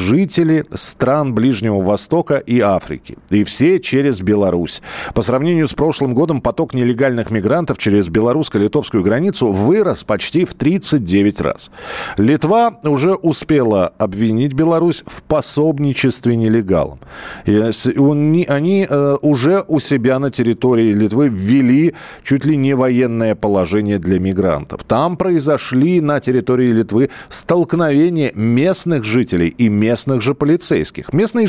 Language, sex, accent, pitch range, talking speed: Russian, male, native, 115-165 Hz, 120 wpm